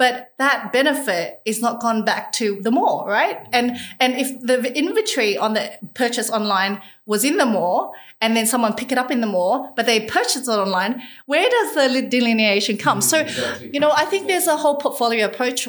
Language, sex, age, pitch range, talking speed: English, female, 30-49, 200-250 Hz, 205 wpm